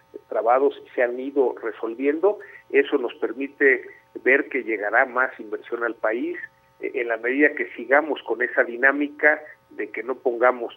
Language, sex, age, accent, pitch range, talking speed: Spanish, male, 50-69, Mexican, 325-425 Hz, 155 wpm